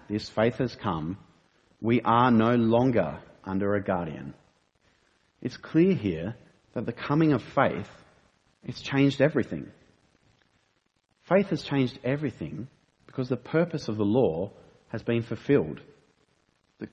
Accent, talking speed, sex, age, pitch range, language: Australian, 130 wpm, male, 40-59, 100-130 Hz, English